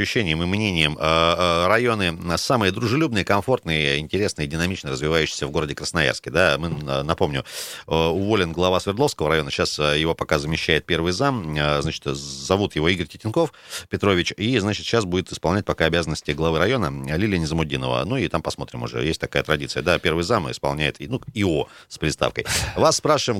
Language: Russian